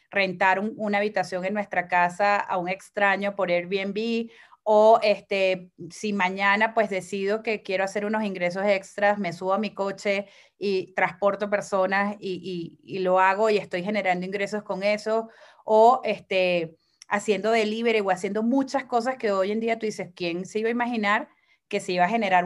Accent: Venezuelan